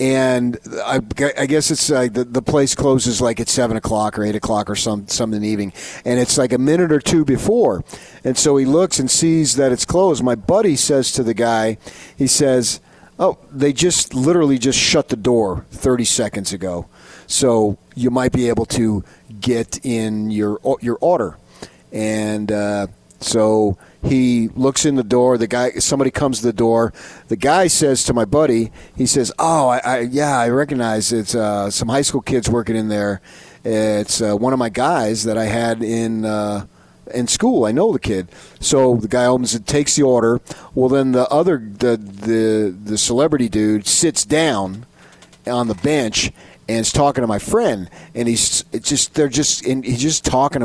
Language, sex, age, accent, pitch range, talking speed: English, male, 40-59, American, 110-135 Hz, 190 wpm